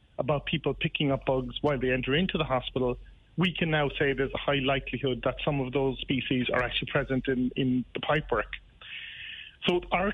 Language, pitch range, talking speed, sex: English, 135-155 Hz, 200 wpm, male